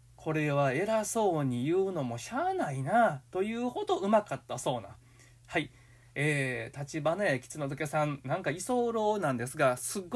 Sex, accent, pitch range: male, native, 125-195 Hz